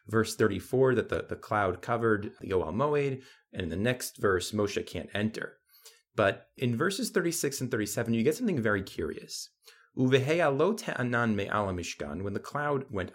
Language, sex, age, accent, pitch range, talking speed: English, male, 30-49, American, 105-160 Hz, 145 wpm